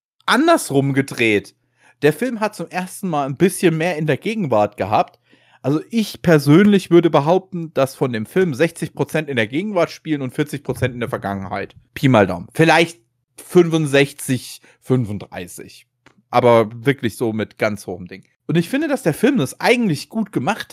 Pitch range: 120-170 Hz